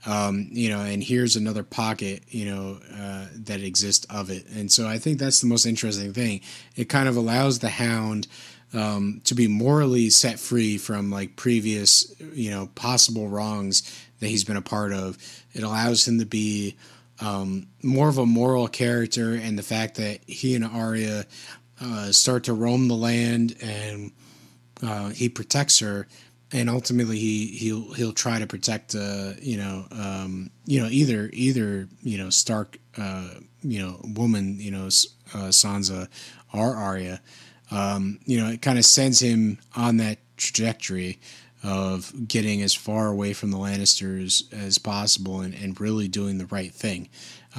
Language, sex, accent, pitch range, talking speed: English, male, American, 100-120 Hz, 170 wpm